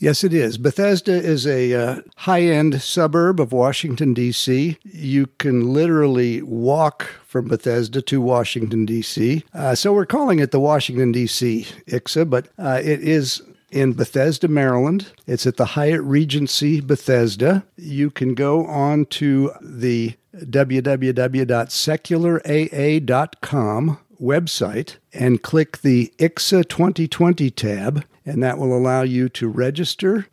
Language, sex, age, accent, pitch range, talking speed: English, male, 60-79, American, 125-155 Hz, 125 wpm